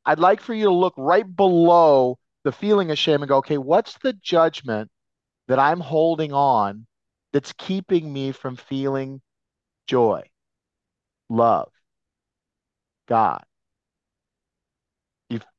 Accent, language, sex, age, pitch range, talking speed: American, English, male, 40-59, 145-185 Hz, 120 wpm